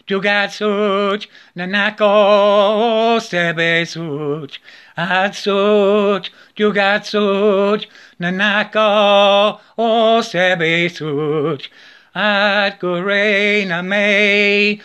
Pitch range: 180-205 Hz